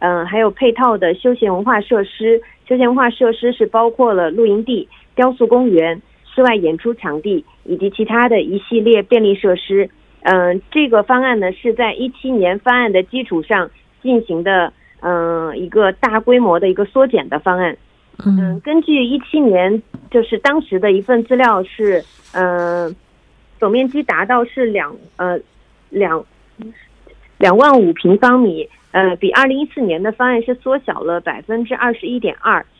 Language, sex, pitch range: Korean, female, 185-250 Hz